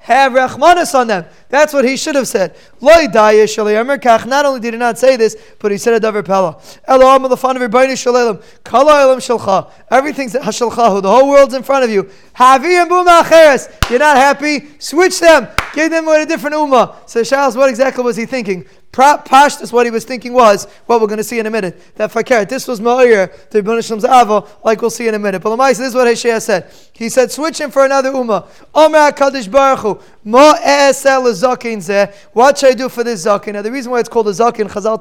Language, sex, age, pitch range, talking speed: English, male, 20-39, 215-270 Hz, 185 wpm